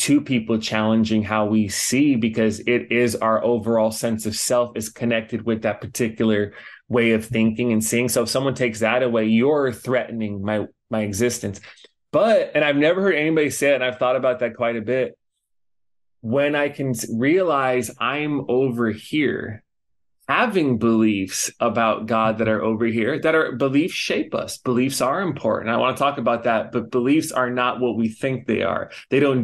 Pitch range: 110-130 Hz